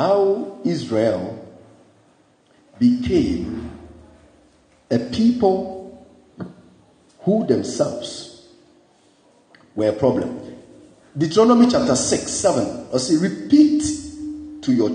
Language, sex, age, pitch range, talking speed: English, male, 50-69, 195-300 Hz, 75 wpm